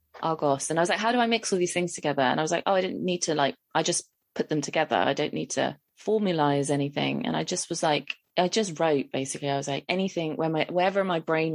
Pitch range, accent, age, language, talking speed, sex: 145-165 Hz, British, 20-39, English, 275 wpm, female